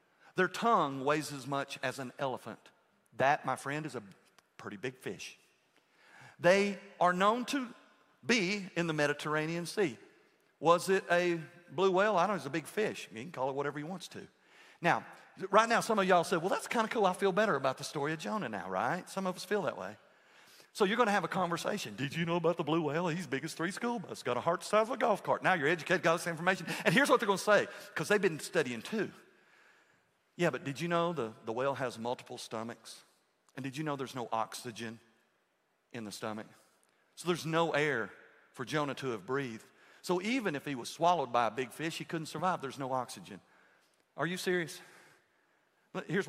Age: 50-69